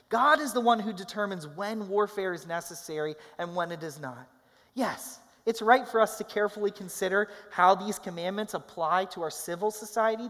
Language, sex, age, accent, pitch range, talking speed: English, male, 30-49, American, 145-210 Hz, 180 wpm